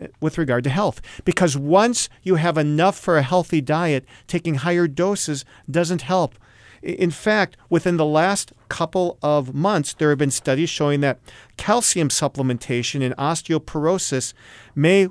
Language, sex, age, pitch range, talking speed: English, male, 40-59, 125-165 Hz, 145 wpm